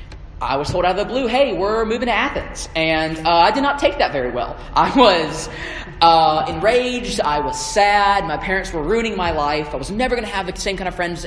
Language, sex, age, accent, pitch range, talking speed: English, male, 20-39, American, 155-215 Hz, 240 wpm